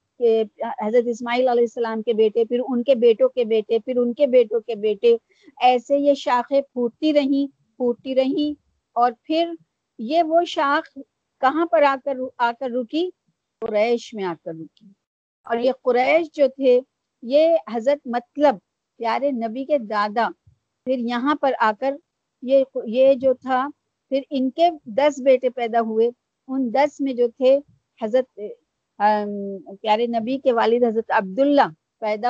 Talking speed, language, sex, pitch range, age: 140 wpm, Urdu, female, 230-280 Hz, 50-69